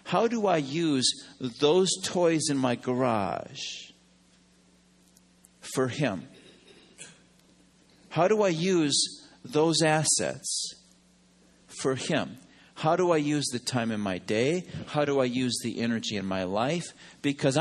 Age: 50-69